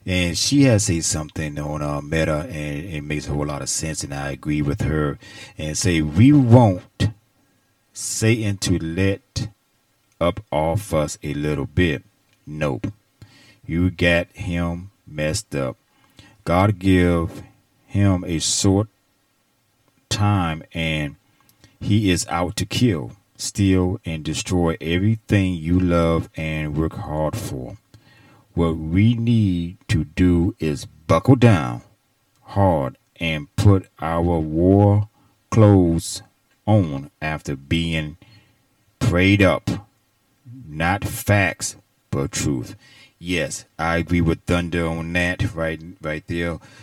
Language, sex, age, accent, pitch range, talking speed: English, male, 30-49, American, 80-105 Hz, 120 wpm